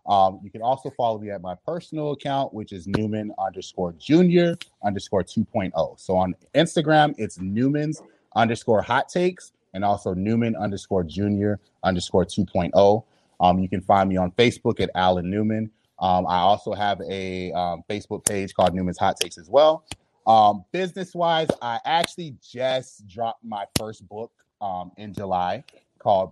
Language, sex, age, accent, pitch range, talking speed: English, male, 30-49, American, 90-115 Hz, 155 wpm